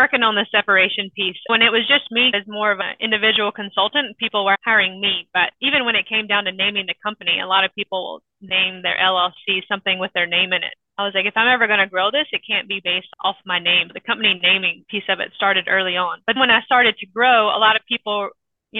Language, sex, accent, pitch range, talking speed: English, female, American, 190-230 Hz, 255 wpm